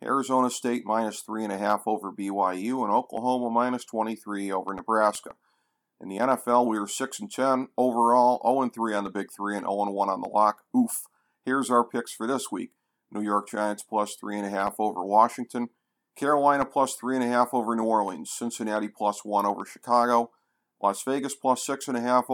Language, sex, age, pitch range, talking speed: English, male, 40-59, 105-130 Hz, 160 wpm